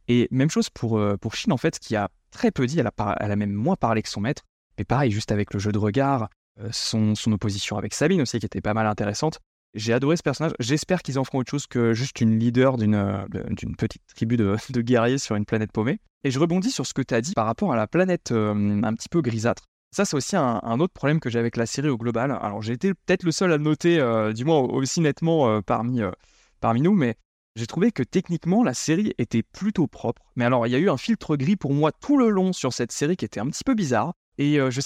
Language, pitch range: French, 115-165 Hz